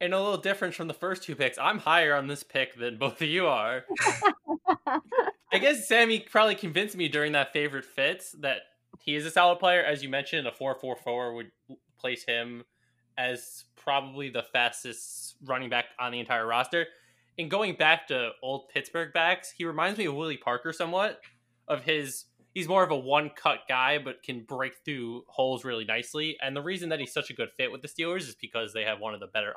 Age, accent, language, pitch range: 20-39, American, English, 125-175 Hz